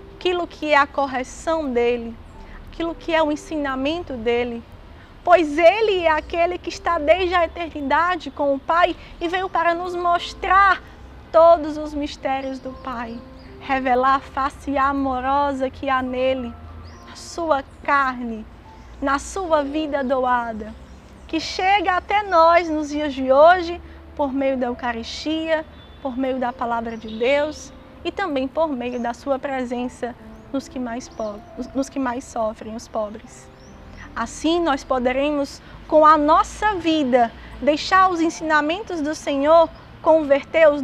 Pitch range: 255-325 Hz